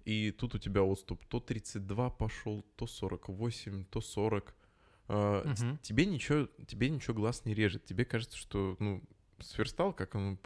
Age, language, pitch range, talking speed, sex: 20-39, Russian, 95-115 Hz, 150 wpm, male